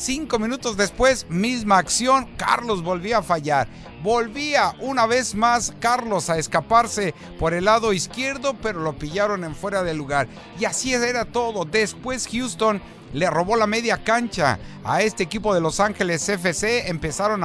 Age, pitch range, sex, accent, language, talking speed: 50-69, 170-230 Hz, male, Mexican, English, 160 wpm